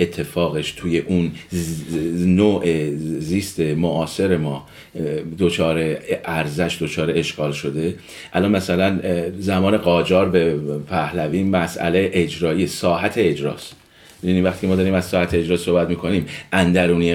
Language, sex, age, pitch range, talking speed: Persian, male, 40-59, 85-110 Hz, 120 wpm